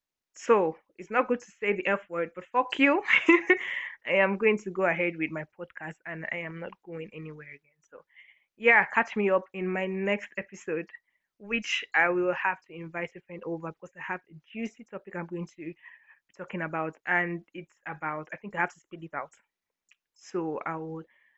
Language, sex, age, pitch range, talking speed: English, female, 20-39, 170-195 Hz, 200 wpm